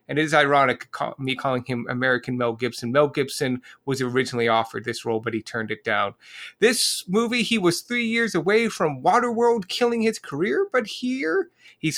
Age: 30-49